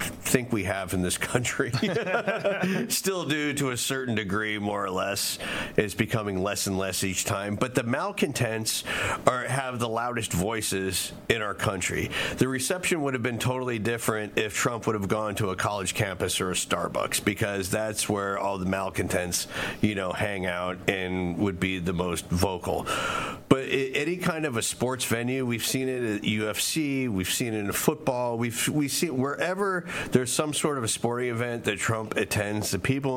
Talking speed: 185 wpm